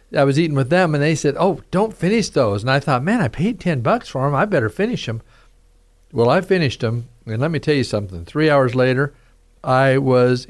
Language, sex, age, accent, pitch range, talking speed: English, male, 50-69, American, 110-135 Hz, 235 wpm